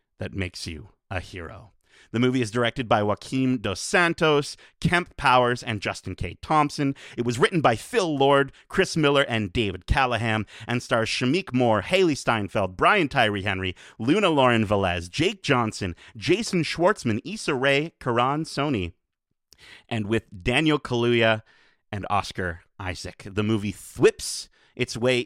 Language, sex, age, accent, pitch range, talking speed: English, male, 30-49, American, 100-140 Hz, 145 wpm